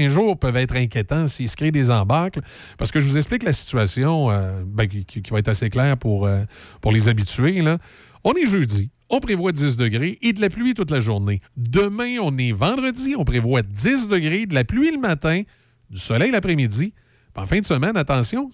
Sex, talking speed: male, 215 wpm